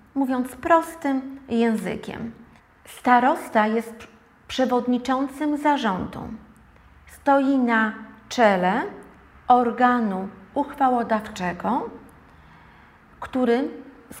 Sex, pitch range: female, 215-255 Hz